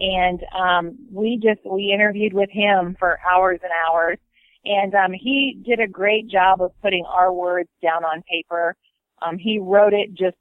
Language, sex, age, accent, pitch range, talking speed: English, female, 30-49, American, 170-195 Hz, 180 wpm